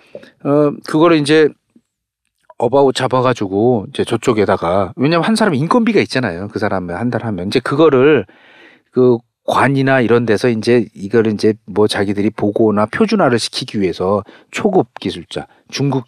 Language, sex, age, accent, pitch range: Korean, male, 40-59, native, 110-155 Hz